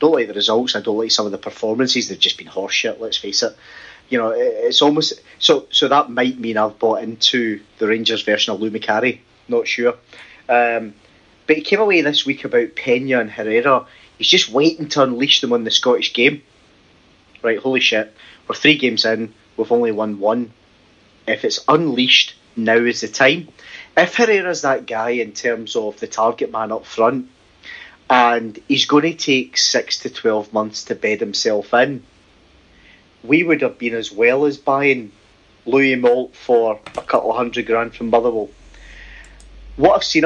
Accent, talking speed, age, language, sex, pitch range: British, 185 wpm, 30-49, English, male, 110-140 Hz